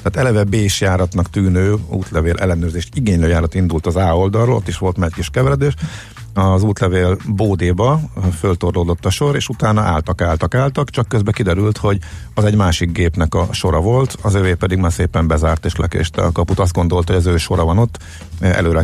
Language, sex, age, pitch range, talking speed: Hungarian, male, 50-69, 85-100 Hz, 195 wpm